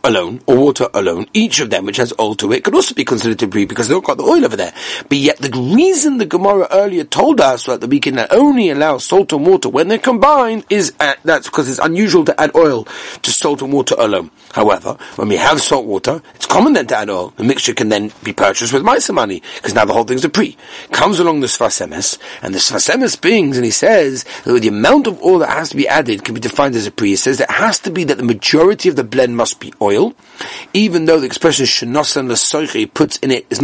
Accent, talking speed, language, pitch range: British, 245 wpm, English, 120-195 Hz